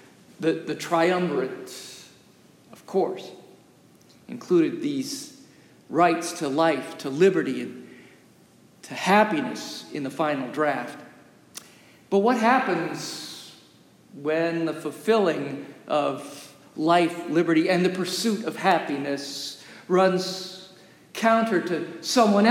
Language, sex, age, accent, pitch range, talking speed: English, male, 50-69, American, 165-220 Hz, 100 wpm